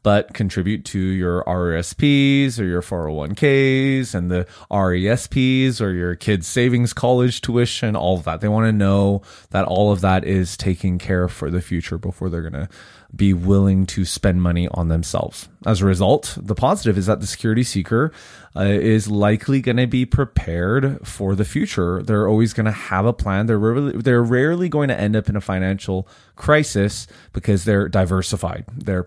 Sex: male